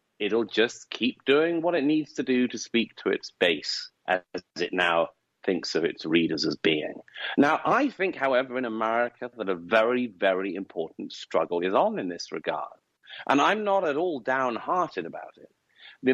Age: 40-59